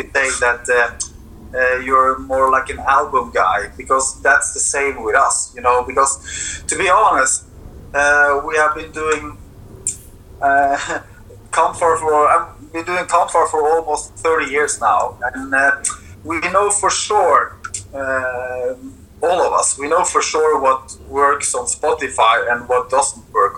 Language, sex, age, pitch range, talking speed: English, male, 30-49, 130-150 Hz, 155 wpm